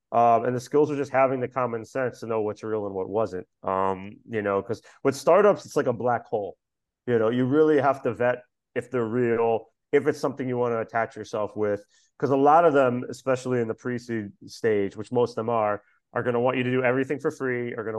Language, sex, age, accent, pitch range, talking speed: English, male, 30-49, American, 110-135 Hz, 250 wpm